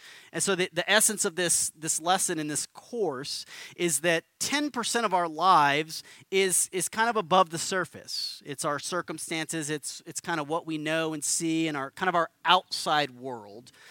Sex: male